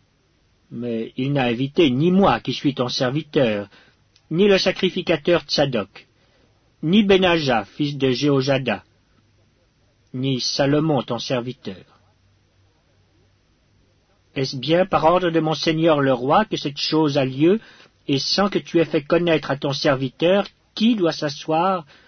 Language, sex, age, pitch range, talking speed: English, male, 50-69, 115-165 Hz, 135 wpm